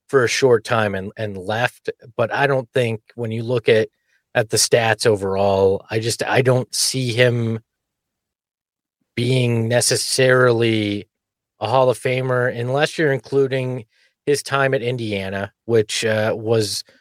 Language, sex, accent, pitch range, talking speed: English, male, American, 105-125 Hz, 145 wpm